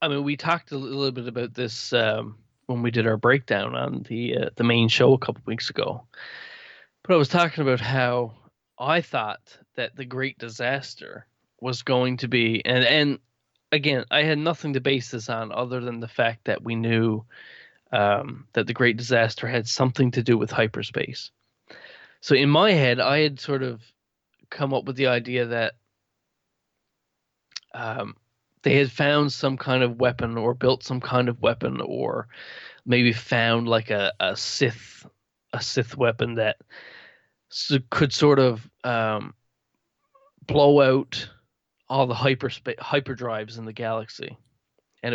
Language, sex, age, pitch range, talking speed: English, male, 20-39, 115-135 Hz, 165 wpm